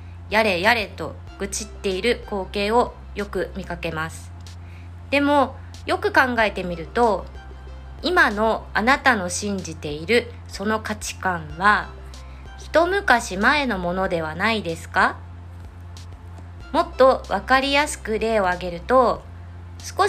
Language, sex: Japanese, female